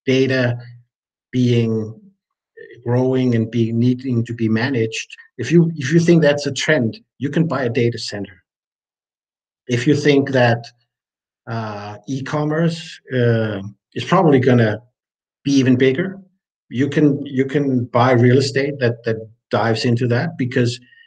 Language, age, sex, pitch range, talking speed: English, 50-69, male, 120-150 Hz, 140 wpm